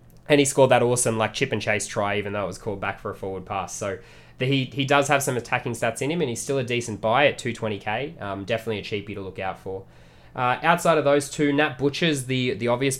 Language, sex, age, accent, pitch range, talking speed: English, male, 20-39, Australian, 100-135 Hz, 255 wpm